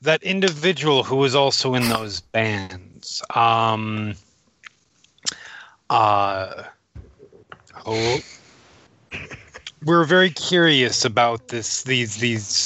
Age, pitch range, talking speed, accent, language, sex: 30-49, 115-175 Hz, 80 wpm, American, English, male